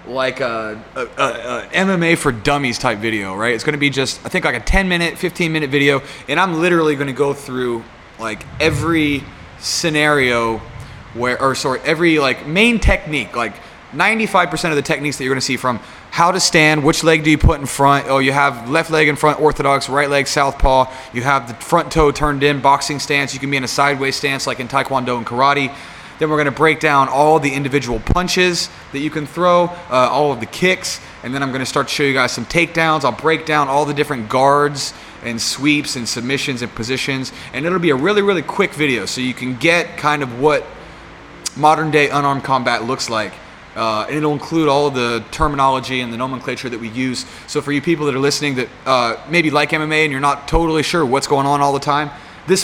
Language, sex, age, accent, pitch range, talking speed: English, male, 20-39, American, 130-155 Hz, 225 wpm